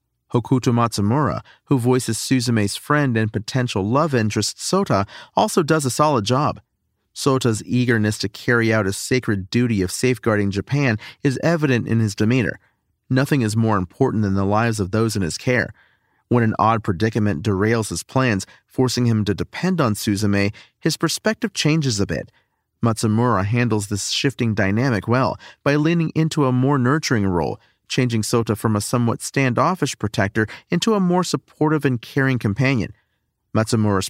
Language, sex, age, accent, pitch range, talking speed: English, male, 40-59, American, 105-135 Hz, 160 wpm